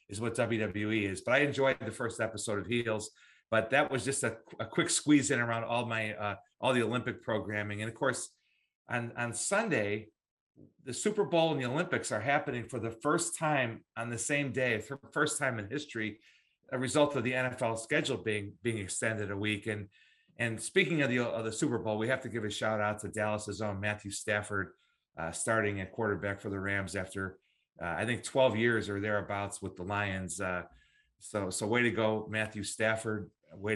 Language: English